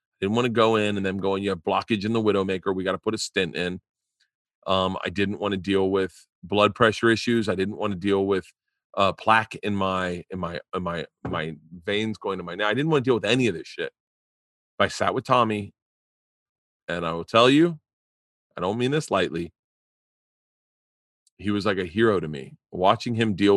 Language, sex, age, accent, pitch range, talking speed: English, male, 30-49, American, 90-110 Hz, 220 wpm